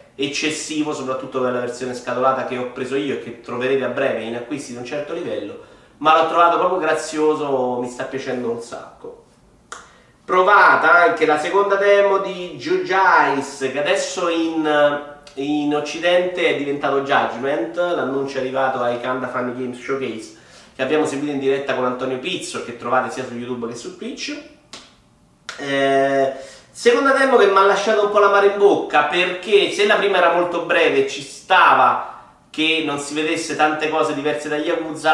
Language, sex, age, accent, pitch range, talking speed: Italian, male, 30-49, native, 130-160 Hz, 175 wpm